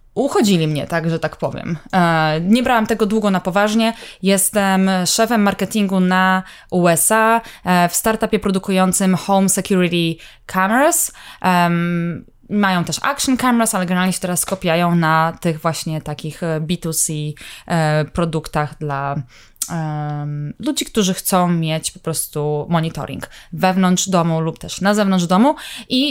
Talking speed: 125 wpm